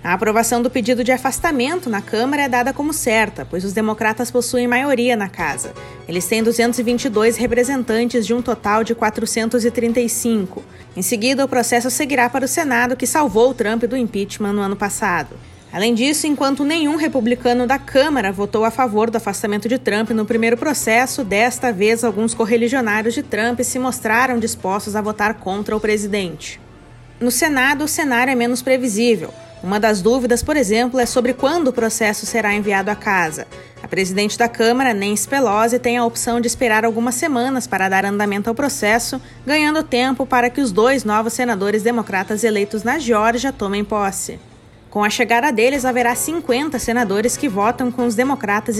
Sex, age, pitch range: female, 20-39, 210-250 Hz